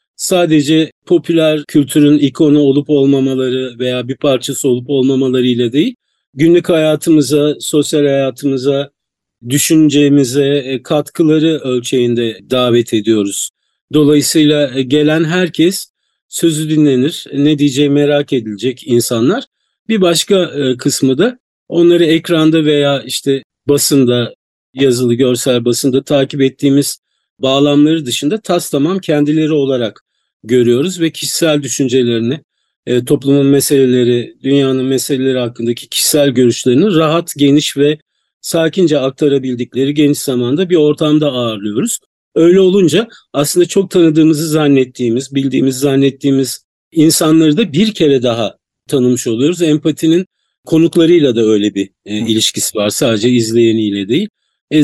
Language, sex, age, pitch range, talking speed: Turkish, male, 50-69, 130-160 Hz, 105 wpm